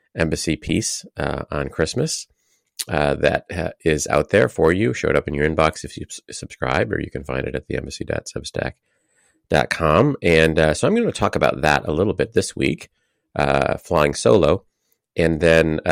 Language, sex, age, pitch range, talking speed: English, male, 30-49, 70-80 Hz, 180 wpm